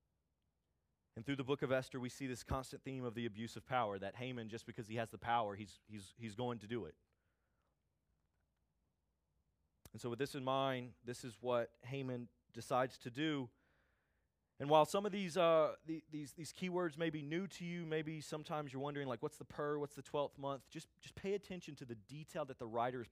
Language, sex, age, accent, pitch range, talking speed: English, male, 30-49, American, 110-150 Hz, 215 wpm